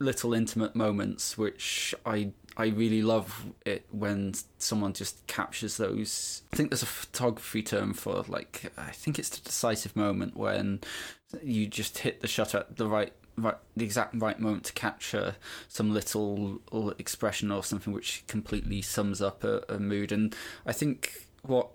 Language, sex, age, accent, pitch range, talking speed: English, male, 20-39, British, 100-115 Hz, 165 wpm